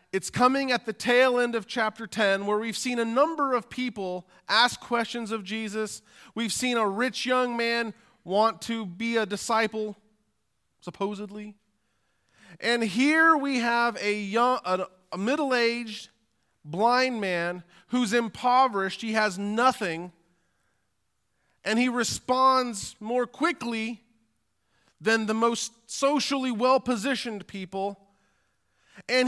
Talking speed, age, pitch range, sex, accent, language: 120 wpm, 40-59, 185-245 Hz, male, American, English